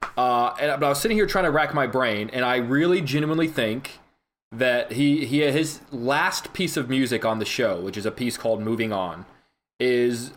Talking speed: 210 wpm